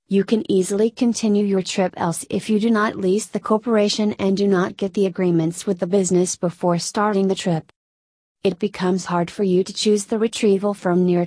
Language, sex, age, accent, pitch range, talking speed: English, female, 30-49, American, 175-205 Hz, 200 wpm